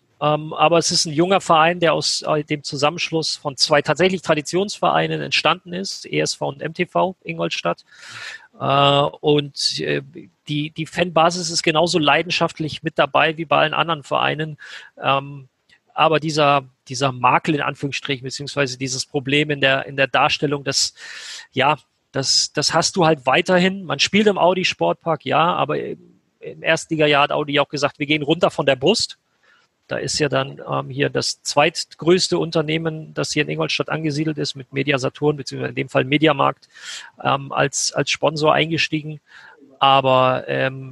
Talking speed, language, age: 160 wpm, German, 40-59